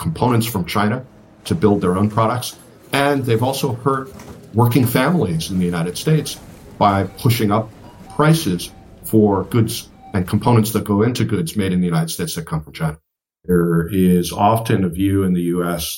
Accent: American